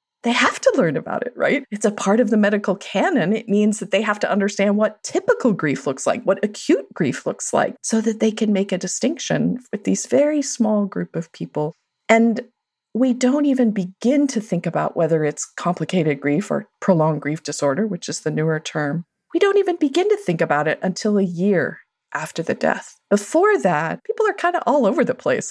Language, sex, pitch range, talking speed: English, female, 175-240 Hz, 210 wpm